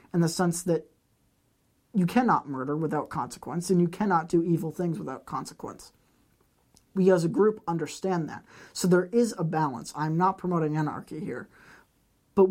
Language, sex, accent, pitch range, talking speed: English, male, American, 155-190 Hz, 165 wpm